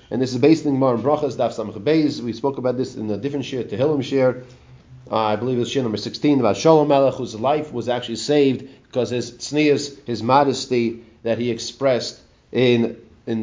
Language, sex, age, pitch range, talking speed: English, male, 30-49, 130-165 Hz, 185 wpm